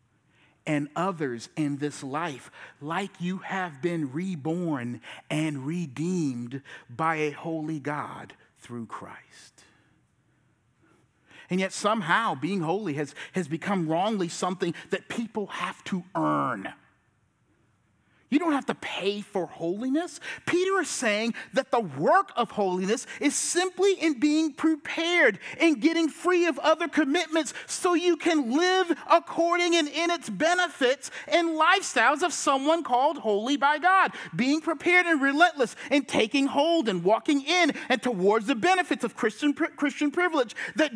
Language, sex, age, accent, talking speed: English, male, 40-59, American, 140 wpm